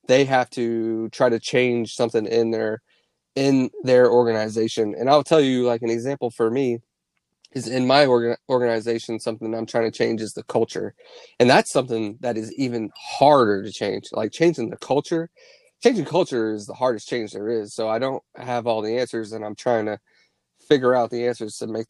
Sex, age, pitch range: male, 30-49, 110-130 Hz